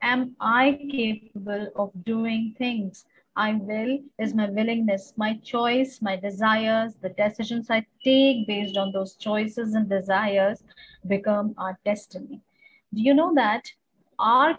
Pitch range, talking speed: 215-265 Hz, 135 wpm